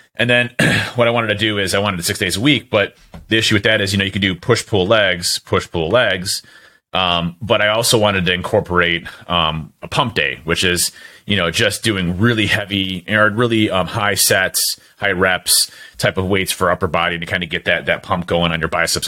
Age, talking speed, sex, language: 30-49, 235 wpm, male, English